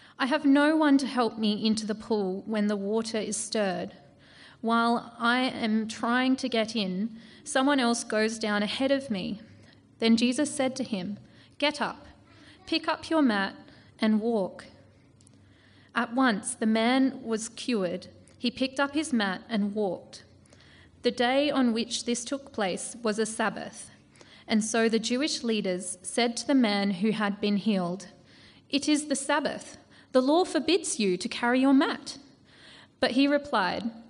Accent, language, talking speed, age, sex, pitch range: Australian, English, 165 wpm, 30-49, female, 210-270 Hz